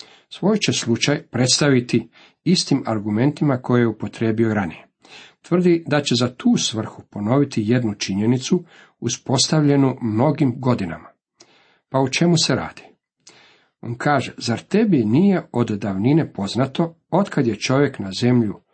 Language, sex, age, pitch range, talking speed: Croatian, male, 50-69, 115-160 Hz, 130 wpm